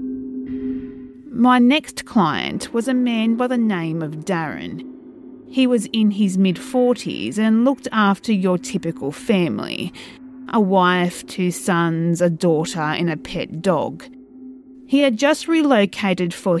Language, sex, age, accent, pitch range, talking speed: English, female, 30-49, Australian, 180-260 Hz, 135 wpm